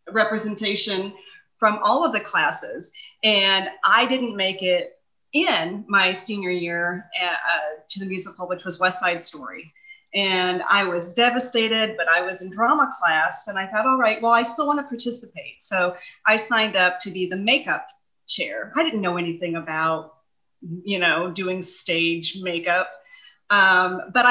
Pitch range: 185-240 Hz